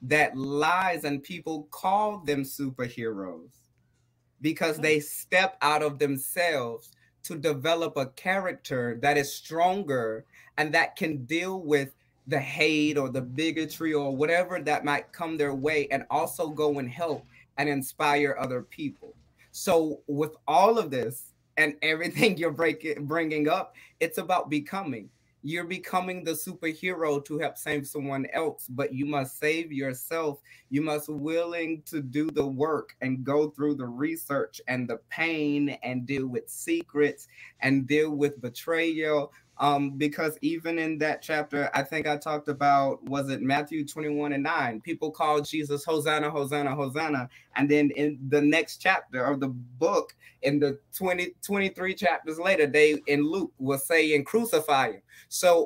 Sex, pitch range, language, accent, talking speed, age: male, 140-165 Hz, English, American, 155 wpm, 30-49